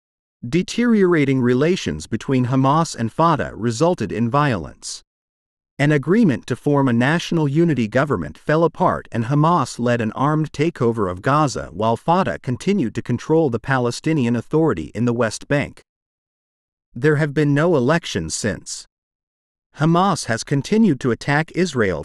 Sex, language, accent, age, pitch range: male, Chinese, American, 50-69, 115-160 Hz